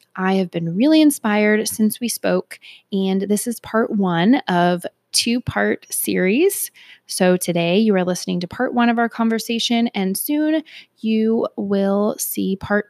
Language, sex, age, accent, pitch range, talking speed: English, female, 20-39, American, 195-255 Hz, 155 wpm